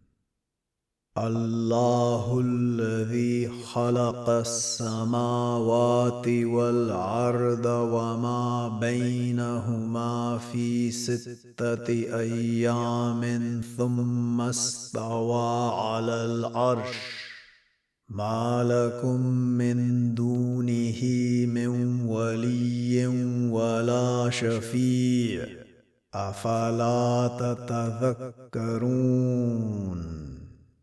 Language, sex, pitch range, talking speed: Arabic, male, 115-125 Hz, 45 wpm